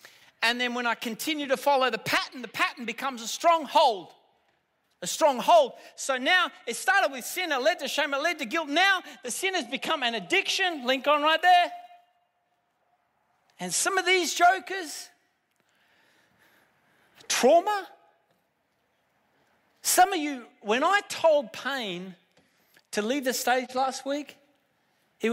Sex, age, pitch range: male, 30-49, 205-295 Hz